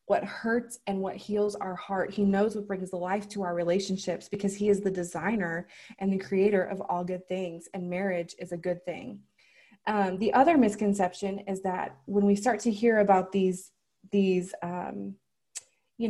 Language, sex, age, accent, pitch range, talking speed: English, female, 20-39, American, 185-210 Hz, 185 wpm